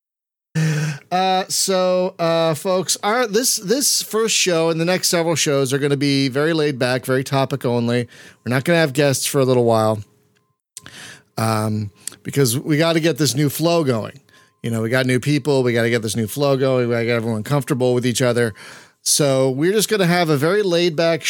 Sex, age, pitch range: male, 40-59, 130-170 Hz